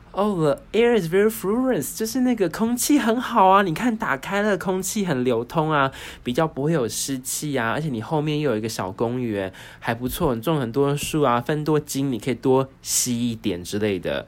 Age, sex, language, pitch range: 20-39, male, Chinese, 110-150 Hz